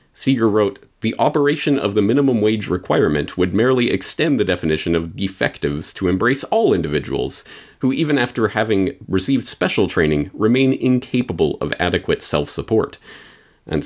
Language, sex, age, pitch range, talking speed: English, male, 30-49, 90-120 Hz, 145 wpm